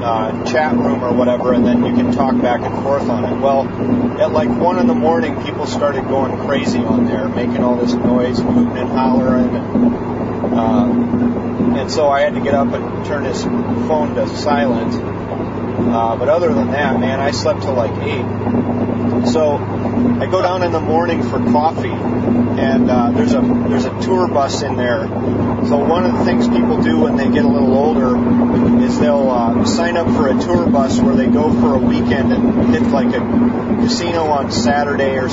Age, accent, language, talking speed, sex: 30-49, American, English, 195 wpm, male